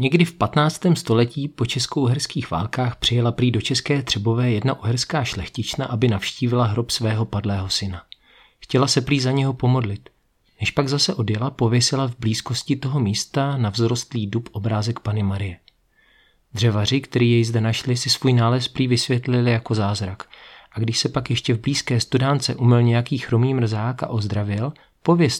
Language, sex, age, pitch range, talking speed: Czech, male, 40-59, 115-135 Hz, 165 wpm